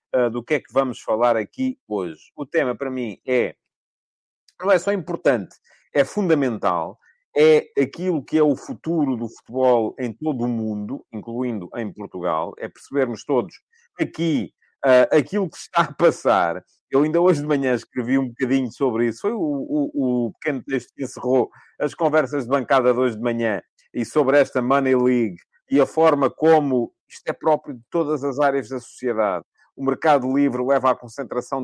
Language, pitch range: English, 120-155 Hz